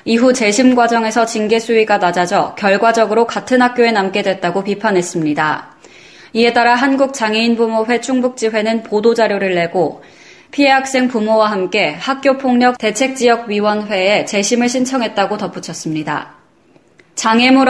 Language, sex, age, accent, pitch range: Korean, female, 20-39, native, 200-255 Hz